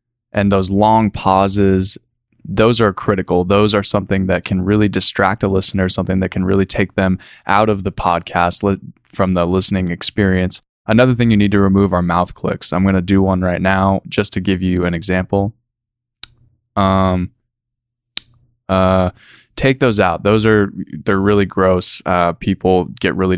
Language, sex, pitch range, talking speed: English, male, 95-105 Hz, 170 wpm